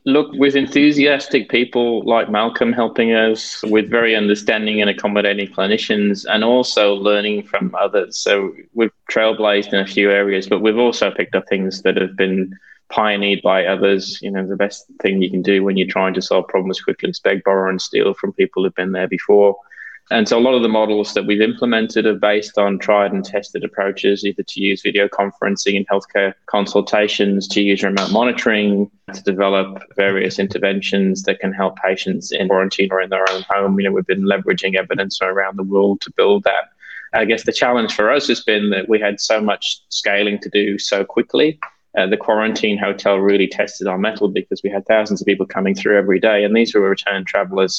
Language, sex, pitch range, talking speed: English, male, 95-110 Hz, 200 wpm